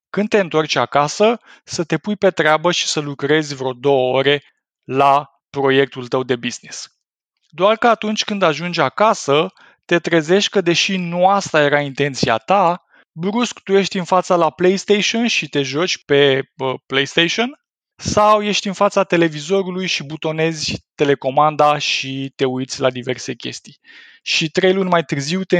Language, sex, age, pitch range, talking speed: Romanian, male, 20-39, 140-185 Hz, 155 wpm